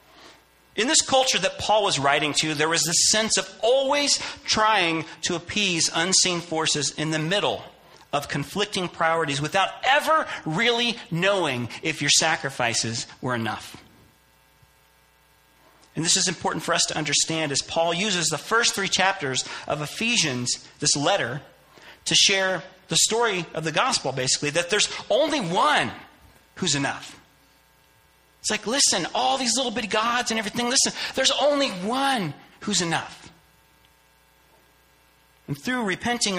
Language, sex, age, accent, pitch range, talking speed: English, male, 40-59, American, 135-205 Hz, 140 wpm